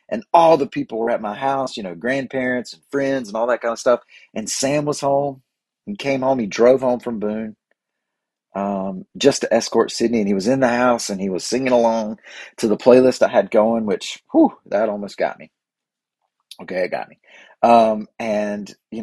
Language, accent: English, American